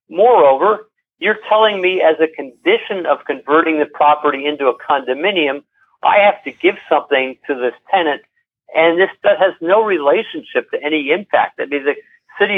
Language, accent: English, American